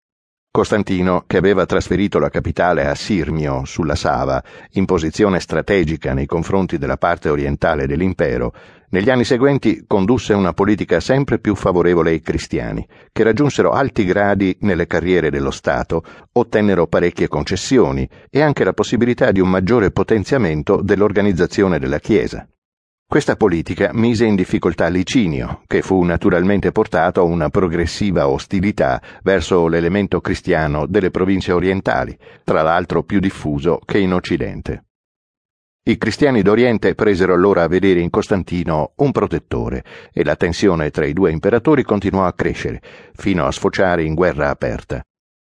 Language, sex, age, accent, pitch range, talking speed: Italian, male, 60-79, native, 85-105 Hz, 140 wpm